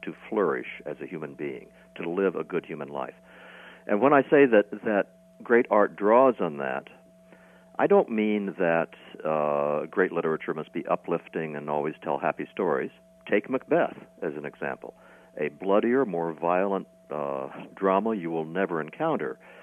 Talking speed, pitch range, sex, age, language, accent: 160 wpm, 95-130 Hz, male, 60-79, English, American